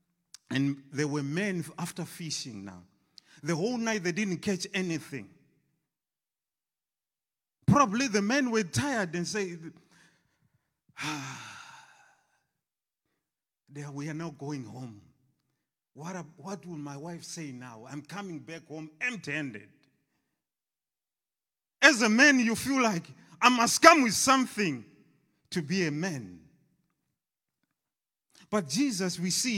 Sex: male